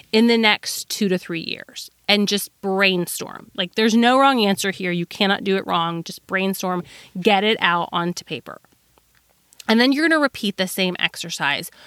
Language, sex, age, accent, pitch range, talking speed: English, female, 30-49, American, 180-235 Hz, 185 wpm